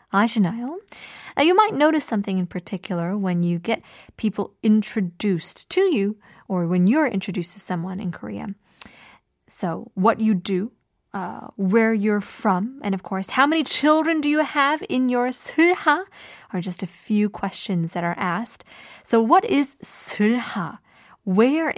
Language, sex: Korean, female